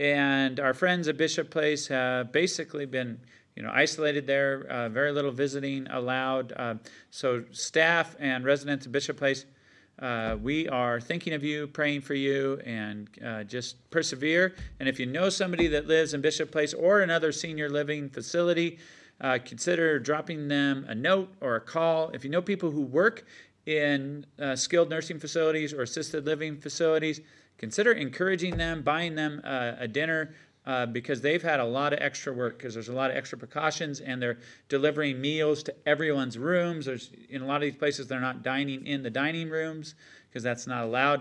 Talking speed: 185 wpm